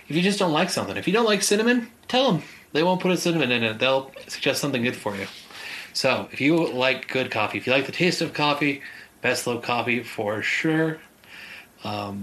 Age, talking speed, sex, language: 30-49, 220 wpm, male, English